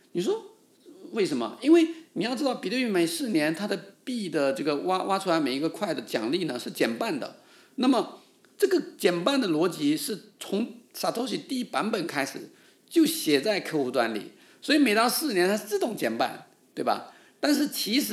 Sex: male